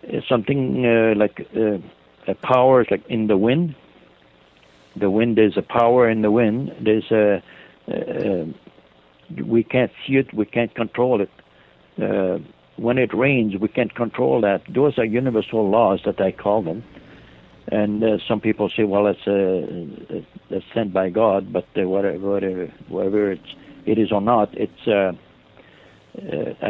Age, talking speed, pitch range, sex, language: 60-79, 160 wpm, 95-115 Hz, male, English